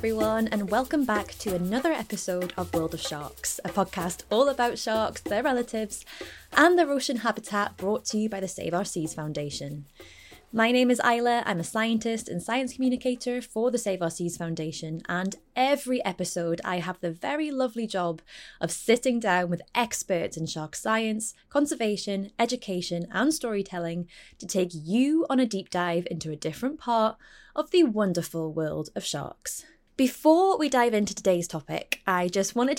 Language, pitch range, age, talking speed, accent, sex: English, 175-240 Hz, 20-39, 170 wpm, British, female